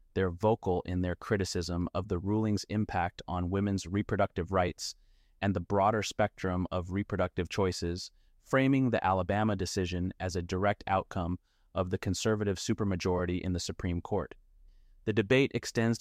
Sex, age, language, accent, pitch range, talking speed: male, 30-49, English, American, 90-105 Hz, 145 wpm